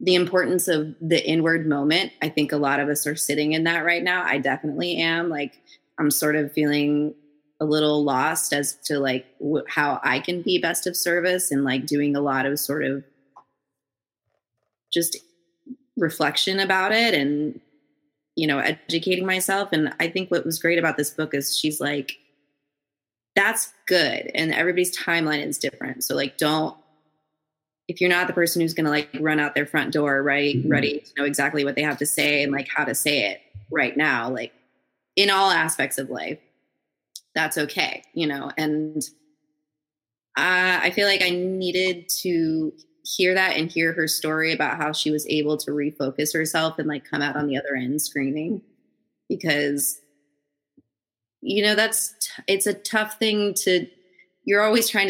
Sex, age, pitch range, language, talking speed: female, 20-39, 145-175 Hz, English, 175 wpm